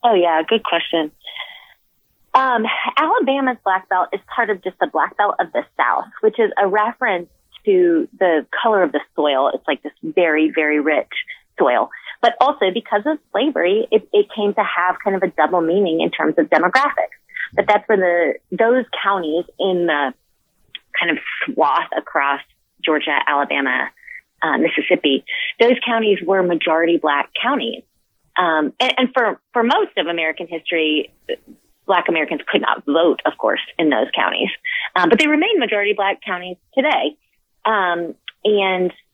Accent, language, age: American, English, 30-49